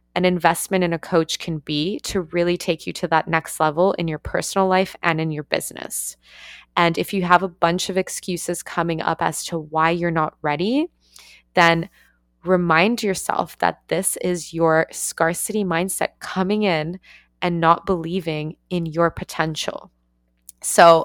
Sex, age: female, 20-39